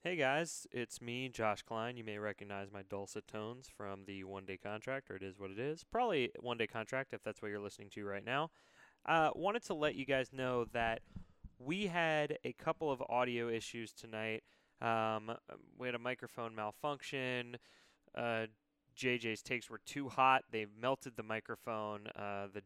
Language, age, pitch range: English, 20-39, 105-130 Hz